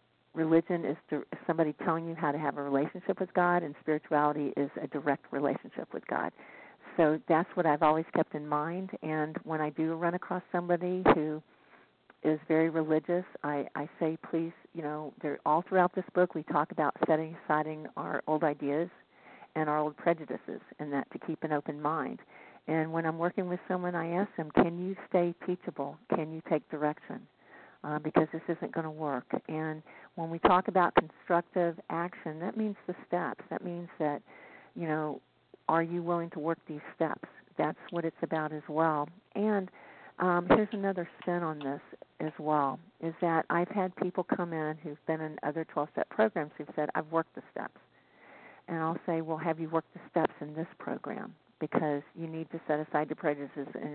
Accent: American